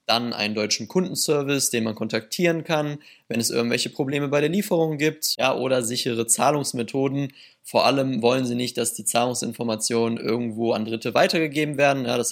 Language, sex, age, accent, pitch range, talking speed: German, male, 20-39, German, 120-165 Hz, 160 wpm